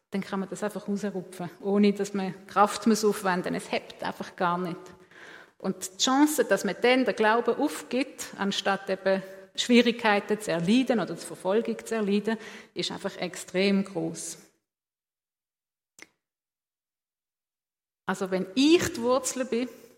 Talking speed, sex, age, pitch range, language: 140 wpm, female, 50-69, 190-240 Hz, German